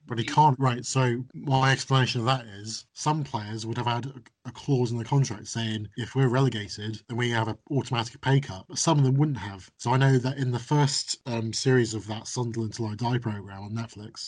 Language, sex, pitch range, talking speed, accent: English, male, 110-130 Hz, 230 wpm, British